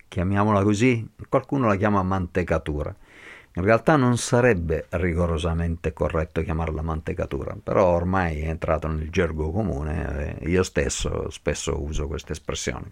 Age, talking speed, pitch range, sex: 50-69, 130 wpm, 85-100 Hz, male